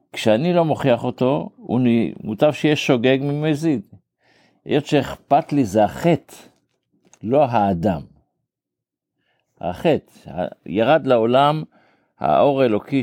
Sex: male